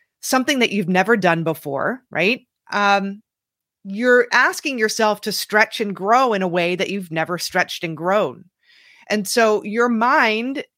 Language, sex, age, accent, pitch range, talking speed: English, female, 30-49, American, 190-240 Hz, 155 wpm